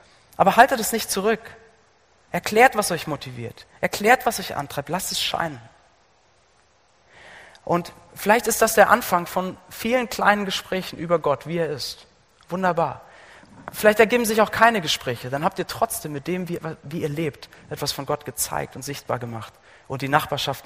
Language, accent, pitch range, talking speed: German, German, 140-195 Hz, 170 wpm